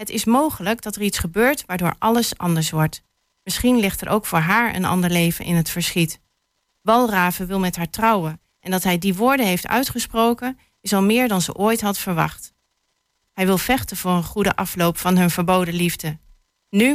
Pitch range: 175-220 Hz